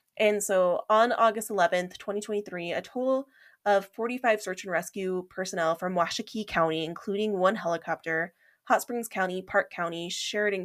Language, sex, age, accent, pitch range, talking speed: English, female, 20-39, American, 180-205 Hz, 145 wpm